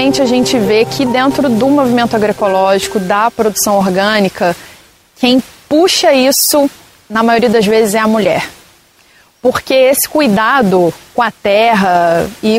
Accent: Brazilian